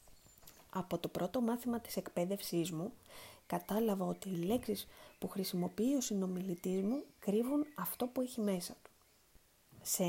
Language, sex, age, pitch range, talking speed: Greek, female, 20-39, 180-240 Hz, 135 wpm